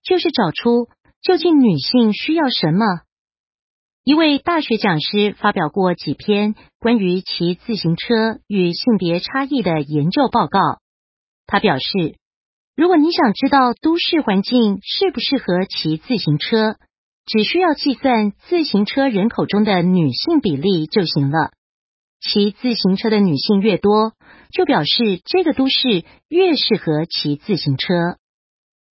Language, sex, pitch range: Vietnamese, female, 175-250 Hz